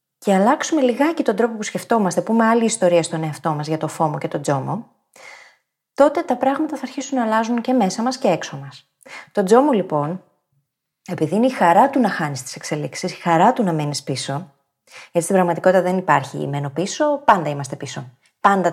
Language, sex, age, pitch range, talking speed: Greek, female, 20-39, 155-235 Hz, 195 wpm